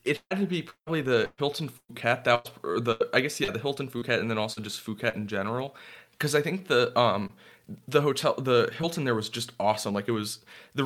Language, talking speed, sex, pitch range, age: English, 230 wpm, male, 115-135 Hz, 20-39